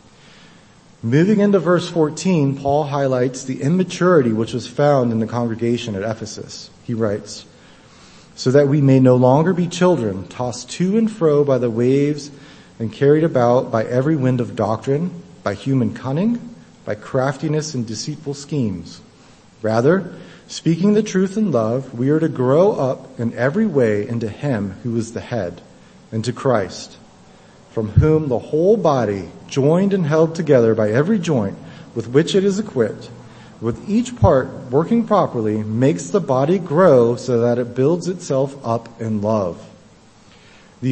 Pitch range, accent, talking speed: 115-160 Hz, American, 155 wpm